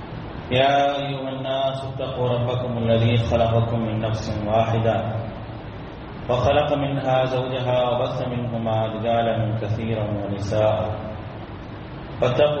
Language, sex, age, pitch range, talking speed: English, male, 30-49, 110-130 Hz, 90 wpm